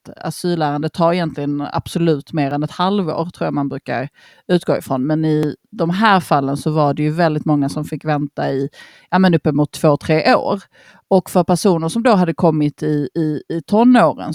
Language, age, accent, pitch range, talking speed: Swedish, 30-49, native, 150-185 Hz, 185 wpm